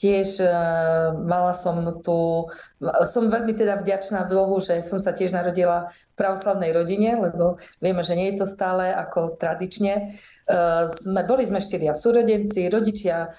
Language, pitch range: Slovak, 165-195 Hz